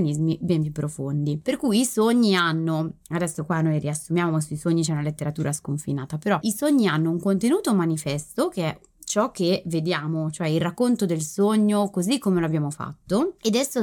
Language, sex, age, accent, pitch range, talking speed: Italian, female, 20-39, native, 160-200 Hz, 180 wpm